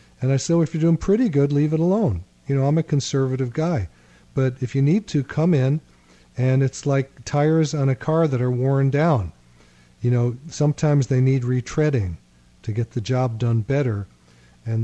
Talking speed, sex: 200 wpm, male